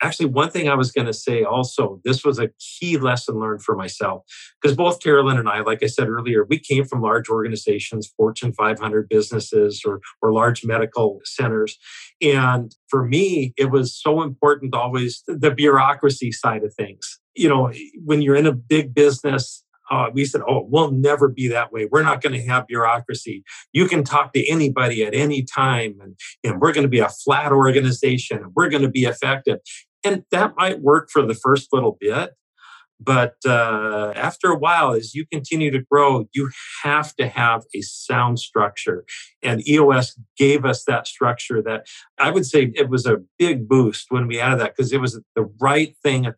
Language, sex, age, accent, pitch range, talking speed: English, male, 50-69, American, 115-145 Hz, 195 wpm